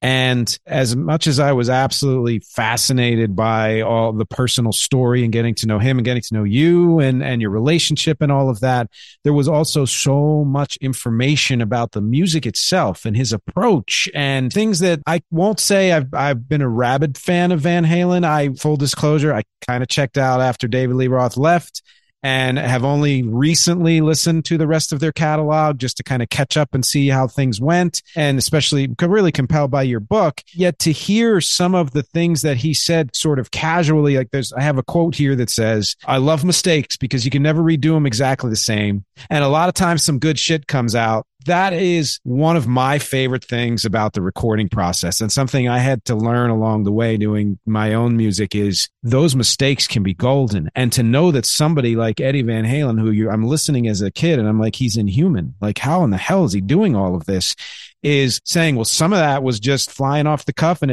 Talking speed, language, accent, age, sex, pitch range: 215 wpm, English, American, 40-59, male, 120-155 Hz